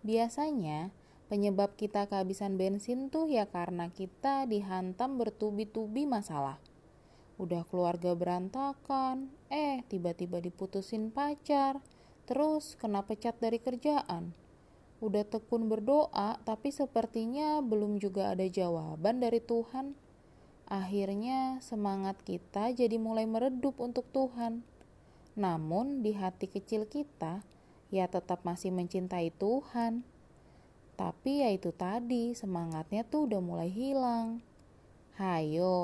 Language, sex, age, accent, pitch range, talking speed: Indonesian, female, 20-39, native, 180-240 Hz, 105 wpm